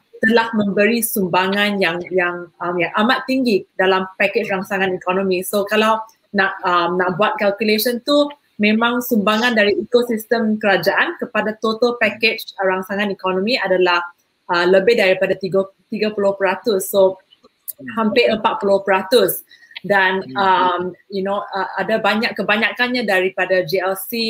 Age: 20-39